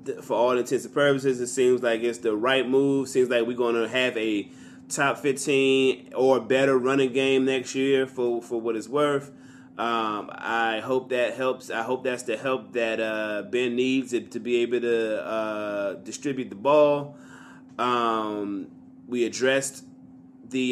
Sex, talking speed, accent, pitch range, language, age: male, 170 wpm, American, 115-135 Hz, English, 20-39